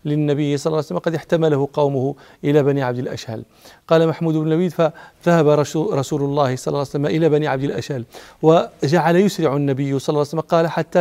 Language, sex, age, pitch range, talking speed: Arabic, male, 40-59, 135-160 Hz, 195 wpm